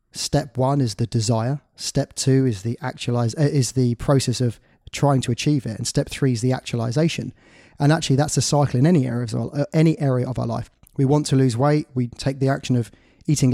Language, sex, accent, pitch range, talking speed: English, male, British, 120-145 Hz, 225 wpm